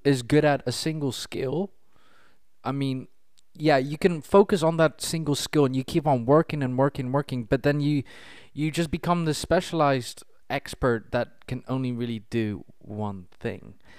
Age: 20-39